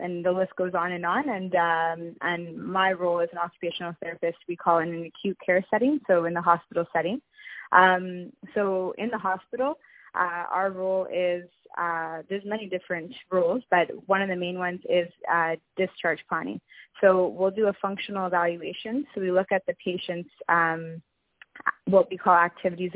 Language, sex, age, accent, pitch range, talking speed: English, female, 20-39, American, 170-190 Hz, 185 wpm